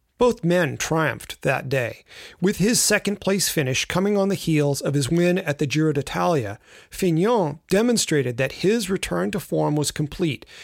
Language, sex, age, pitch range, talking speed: English, male, 40-59, 145-190 Hz, 165 wpm